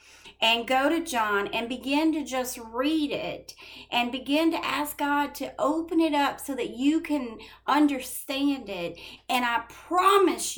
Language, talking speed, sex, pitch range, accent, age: English, 160 wpm, female, 255-325 Hz, American, 40-59